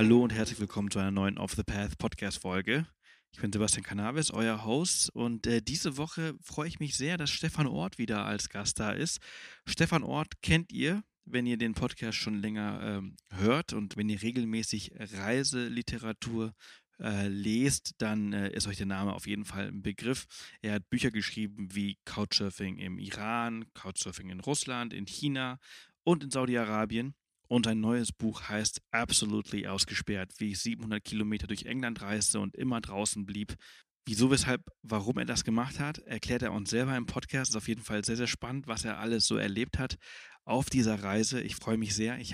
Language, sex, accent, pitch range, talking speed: German, male, German, 105-125 Hz, 185 wpm